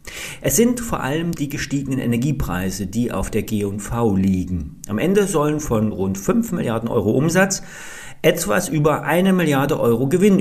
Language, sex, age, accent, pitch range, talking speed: German, male, 40-59, German, 120-185 Hz, 155 wpm